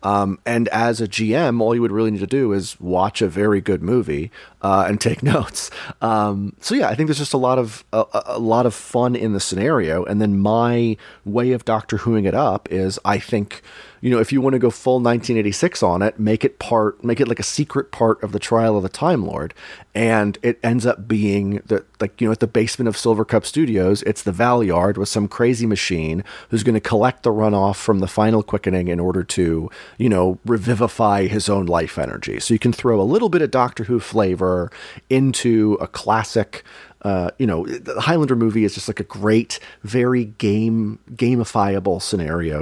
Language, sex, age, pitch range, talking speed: English, male, 30-49, 100-115 Hz, 215 wpm